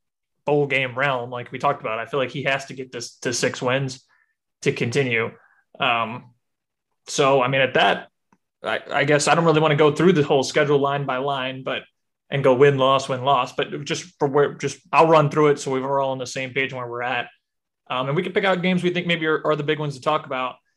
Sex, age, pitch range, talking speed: male, 20-39, 130-150 Hz, 250 wpm